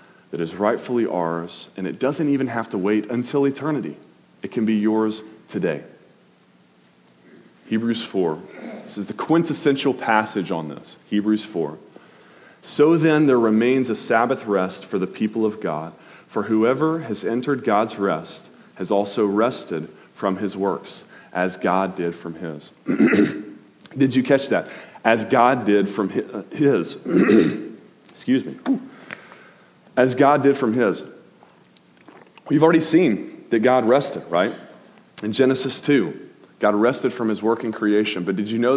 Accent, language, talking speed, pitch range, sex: American, English, 145 wpm, 100-135 Hz, male